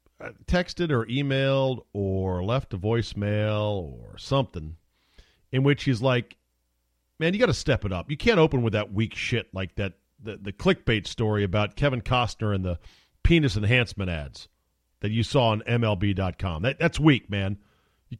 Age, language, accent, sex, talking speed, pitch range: 40-59, English, American, male, 170 wpm, 95-135 Hz